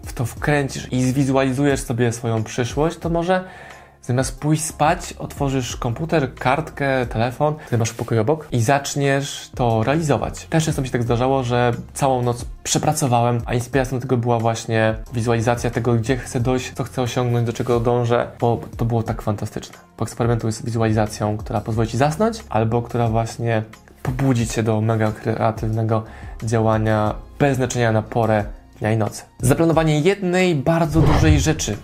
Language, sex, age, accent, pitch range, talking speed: Polish, male, 20-39, native, 115-140 Hz, 160 wpm